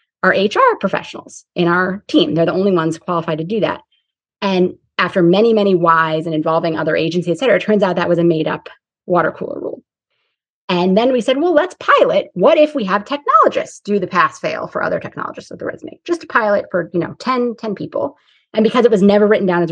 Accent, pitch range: American, 170-235 Hz